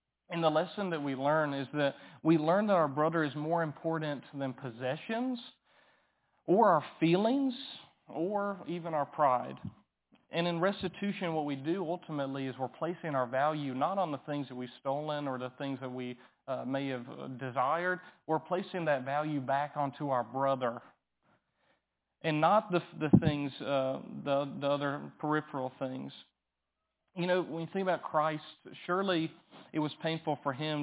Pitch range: 135-165 Hz